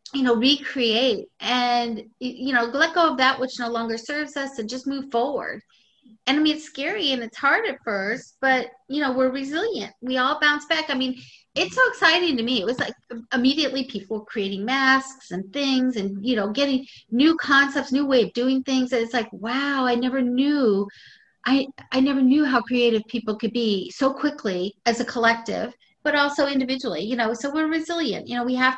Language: English